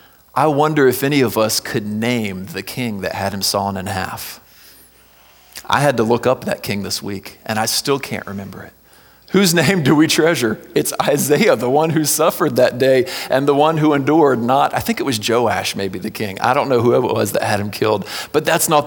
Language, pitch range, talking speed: English, 105-140 Hz, 225 wpm